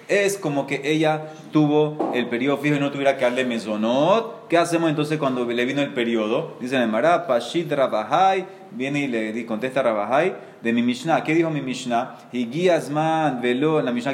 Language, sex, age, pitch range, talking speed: Spanish, male, 30-49, 125-170 Hz, 185 wpm